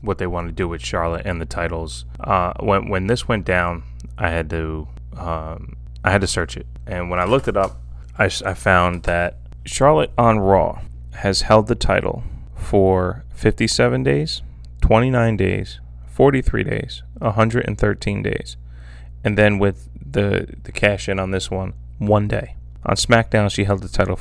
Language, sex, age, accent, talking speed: English, male, 20-39, American, 170 wpm